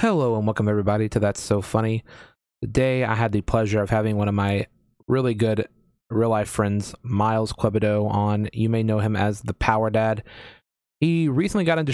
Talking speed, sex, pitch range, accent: 190 wpm, male, 110-130 Hz, American